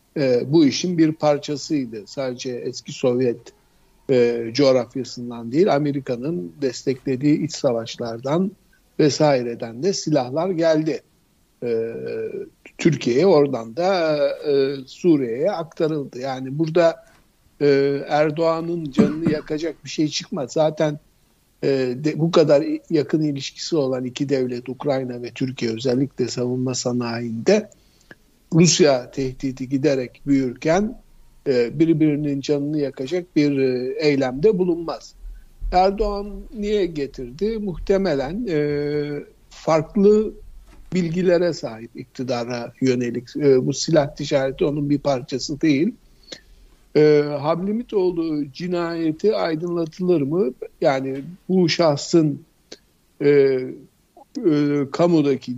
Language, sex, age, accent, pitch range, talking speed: Turkish, male, 60-79, native, 130-165 Hz, 95 wpm